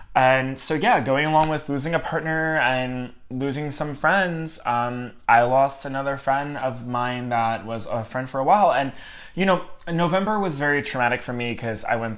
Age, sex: 20-39, male